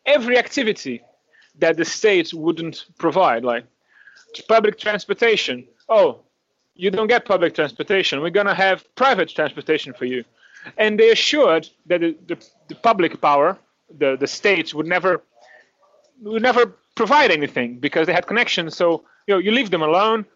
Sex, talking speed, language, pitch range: male, 155 wpm, English, 155-205 Hz